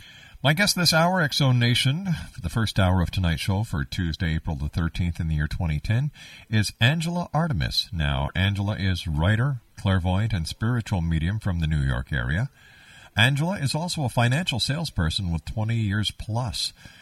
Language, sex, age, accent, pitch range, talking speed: English, male, 50-69, American, 85-125 Hz, 170 wpm